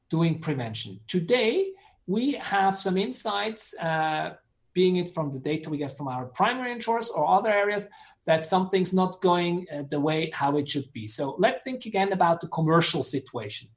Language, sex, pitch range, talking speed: English, male, 160-210 Hz, 180 wpm